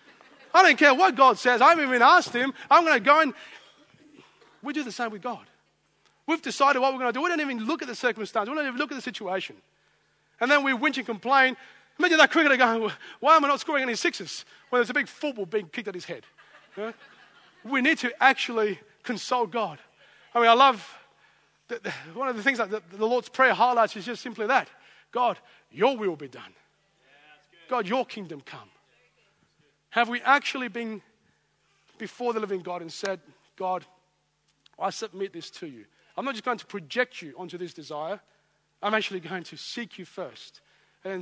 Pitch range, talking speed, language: 190-265 Hz, 200 wpm, English